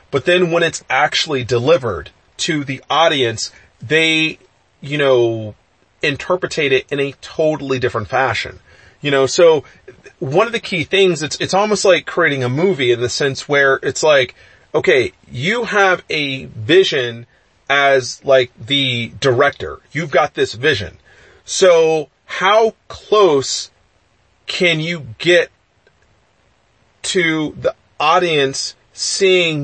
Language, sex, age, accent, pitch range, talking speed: English, male, 30-49, American, 115-155 Hz, 130 wpm